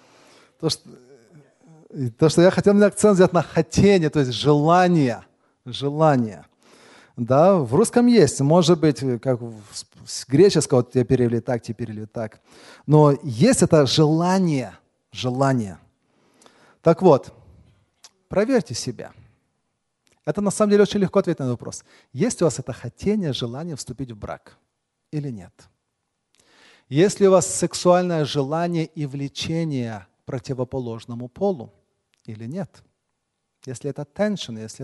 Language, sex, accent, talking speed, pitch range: Russian, male, native, 135 wpm, 125-165 Hz